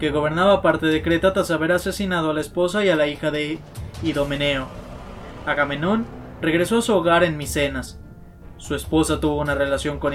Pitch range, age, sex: 145-185 Hz, 20-39, male